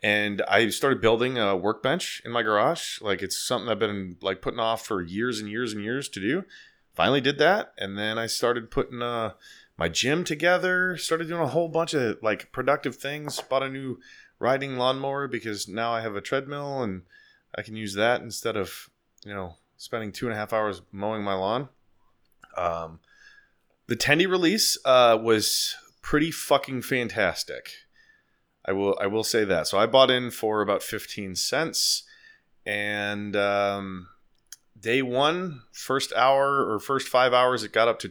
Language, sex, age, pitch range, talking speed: English, male, 20-39, 100-130 Hz, 175 wpm